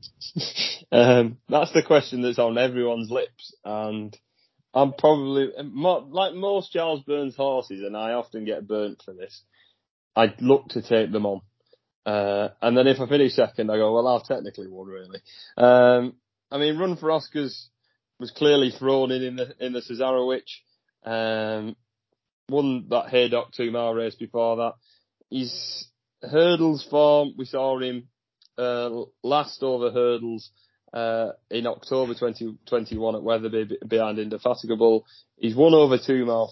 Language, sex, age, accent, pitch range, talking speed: English, male, 20-39, British, 115-130 Hz, 150 wpm